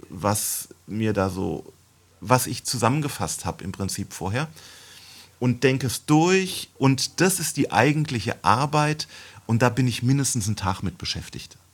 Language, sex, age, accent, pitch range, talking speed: German, male, 40-59, German, 105-145 Hz, 155 wpm